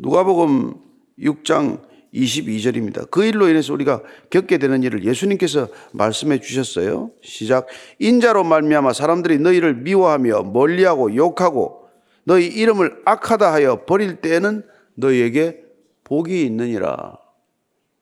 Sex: male